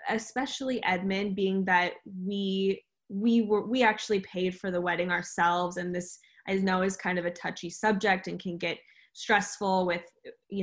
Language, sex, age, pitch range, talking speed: English, female, 10-29, 175-200 Hz, 170 wpm